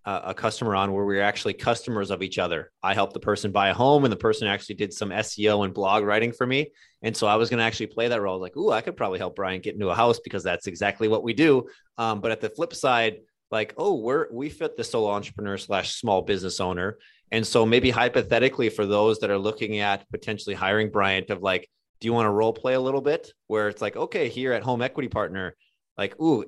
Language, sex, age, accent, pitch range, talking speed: English, male, 30-49, American, 100-120 Hz, 250 wpm